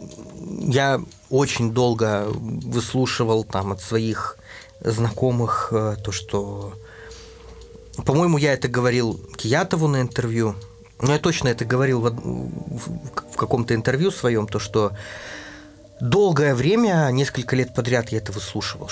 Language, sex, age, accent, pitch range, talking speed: Russian, male, 20-39, native, 105-135 Hz, 115 wpm